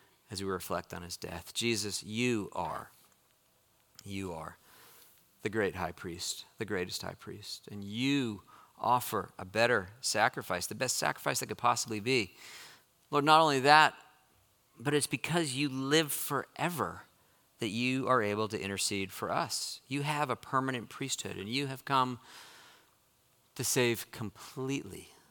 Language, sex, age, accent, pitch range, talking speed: English, male, 40-59, American, 100-130 Hz, 145 wpm